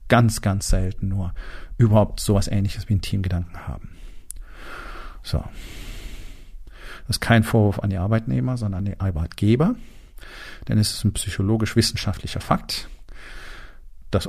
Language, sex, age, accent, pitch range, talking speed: German, male, 50-69, German, 95-120 Hz, 125 wpm